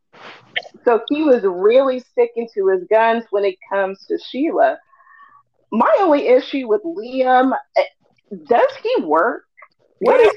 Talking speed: 135 wpm